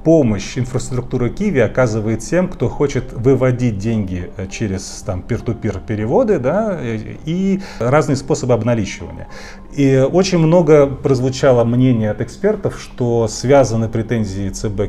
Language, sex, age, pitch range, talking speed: Russian, male, 30-49, 105-130 Hz, 125 wpm